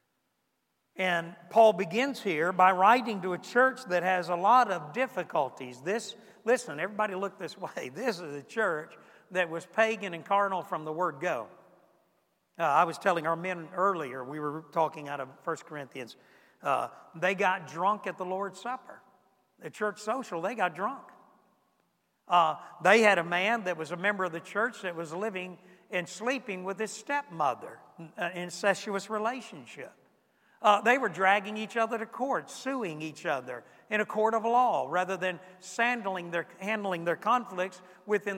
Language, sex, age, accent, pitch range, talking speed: English, male, 60-79, American, 180-220 Hz, 170 wpm